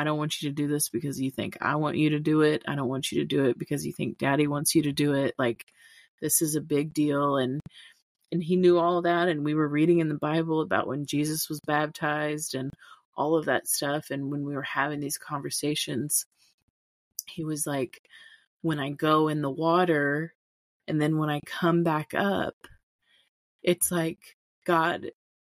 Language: English